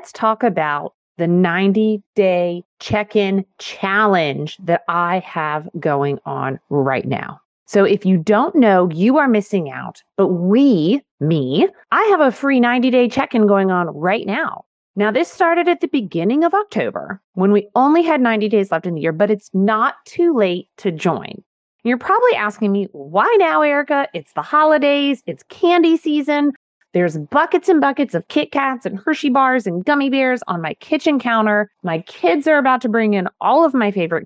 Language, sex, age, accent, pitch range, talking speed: English, female, 30-49, American, 185-275 Hz, 185 wpm